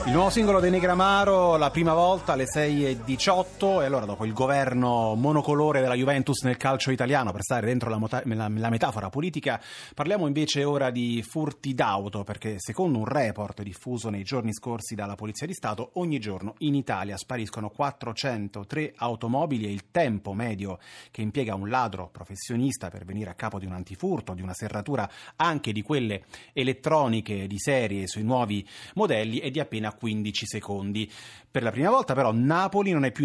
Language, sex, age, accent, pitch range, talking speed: Italian, male, 30-49, native, 105-145 Hz, 175 wpm